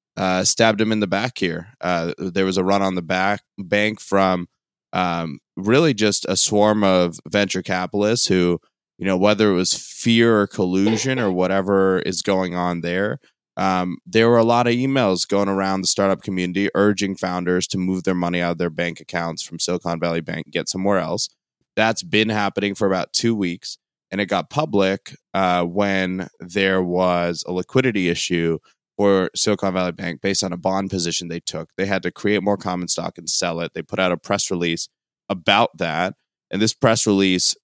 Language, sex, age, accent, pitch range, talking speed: English, male, 20-39, American, 90-100 Hz, 195 wpm